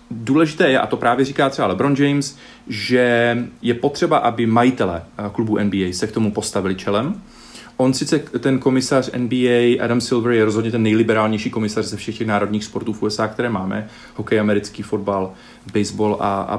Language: Czech